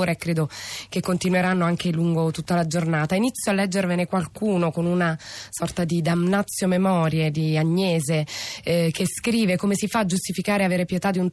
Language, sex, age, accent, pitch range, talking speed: Italian, female, 20-39, native, 170-195 Hz, 175 wpm